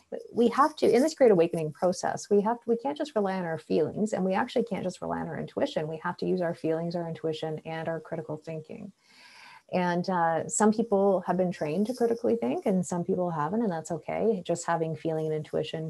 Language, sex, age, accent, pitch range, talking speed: English, female, 30-49, American, 155-185 Hz, 225 wpm